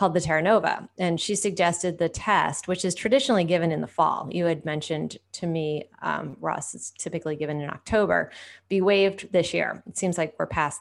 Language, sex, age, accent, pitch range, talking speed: English, female, 30-49, American, 160-195 Hz, 205 wpm